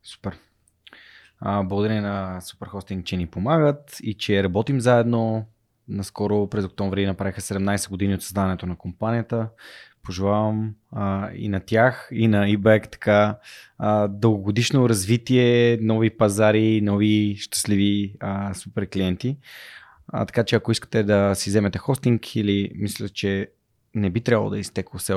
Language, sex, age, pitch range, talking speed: Bulgarian, male, 20-39, 100-120 Hz, 130 wpm